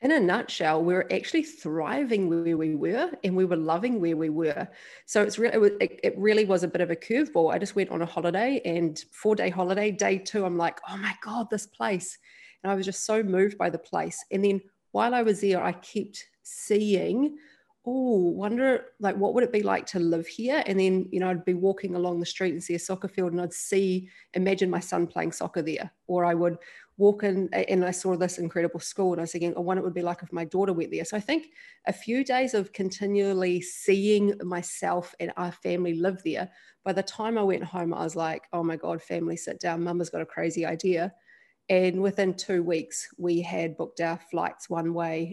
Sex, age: female, 30-49